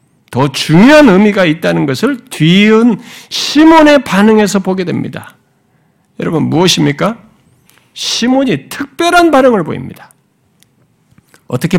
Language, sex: Korean, male